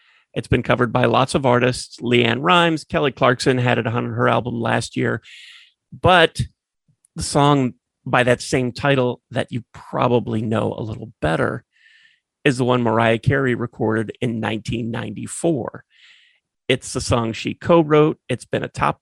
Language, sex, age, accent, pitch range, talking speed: English, male, 30-49, American, 120-140 Hz, 155 wpm